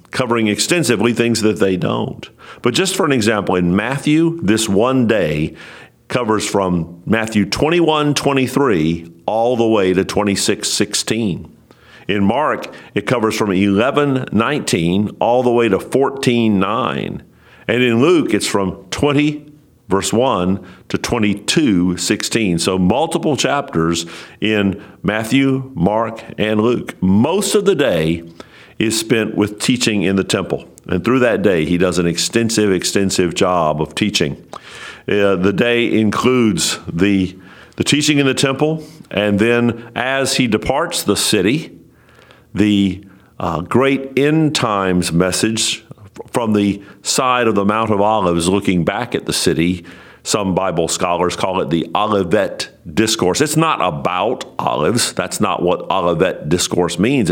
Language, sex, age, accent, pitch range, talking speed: English, male, 50-69, American, 95-125 Hz, 145 wpm